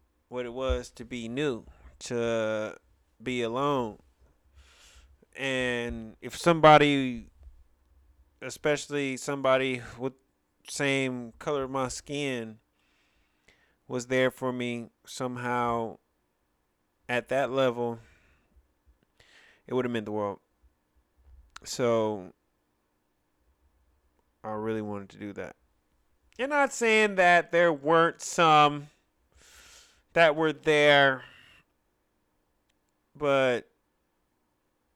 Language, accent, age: English, American, 30-49